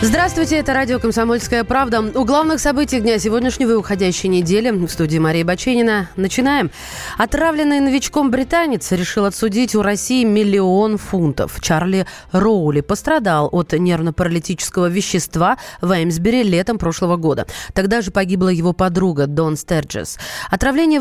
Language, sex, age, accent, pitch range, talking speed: Russian, female, 30-49, native, 180-245 Hz, 130 wpm